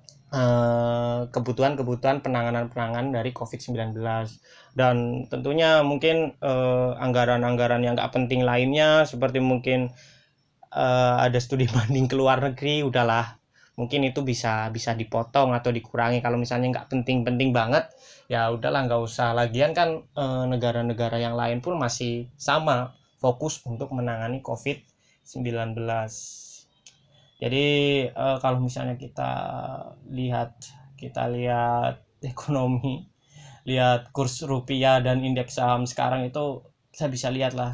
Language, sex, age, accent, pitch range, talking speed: Indonesian, male, 20-39, native, 120-135 Hz, 115 wpm